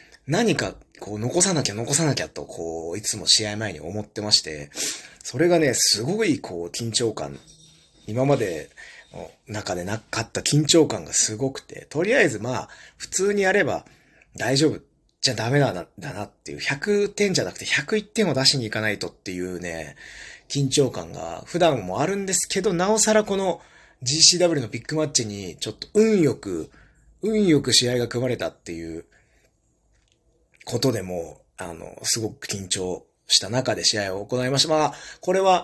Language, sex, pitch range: Japanese, male, 105-155 Hz